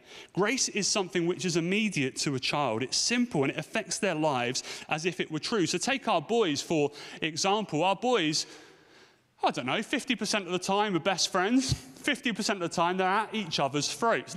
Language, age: English, 30-49